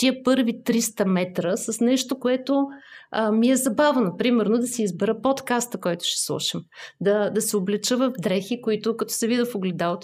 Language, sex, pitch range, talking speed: Bulgarian, female, 190-245 Hz, 165 wpm